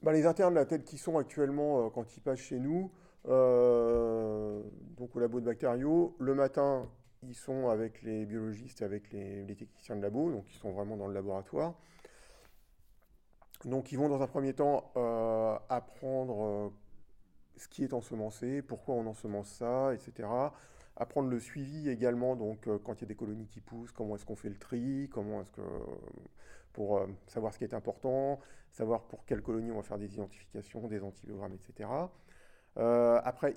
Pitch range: 110-140 Hz